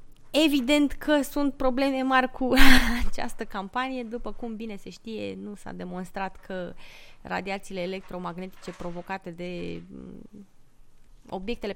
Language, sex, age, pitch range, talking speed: English, female, 20-39, 195-265 Hz, 110 wpm